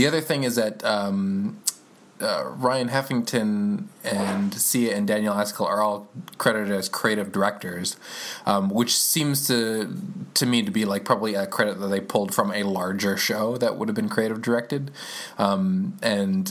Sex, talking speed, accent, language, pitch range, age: male, 170 wpm, American, English, 100-150 Hz, 20-39